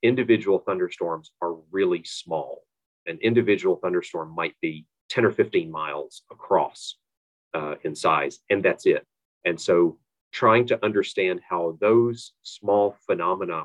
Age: 40-59